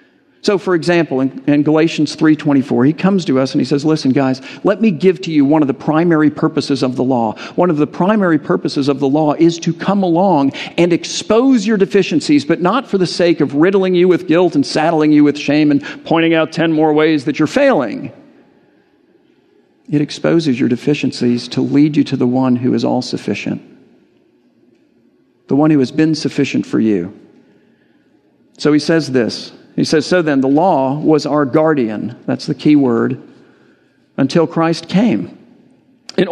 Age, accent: 50-69, American